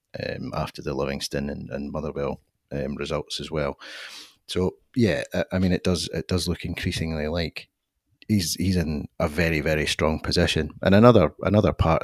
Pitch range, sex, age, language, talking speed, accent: 80-90 Hz, male, 30-49, English, 175 wpm, British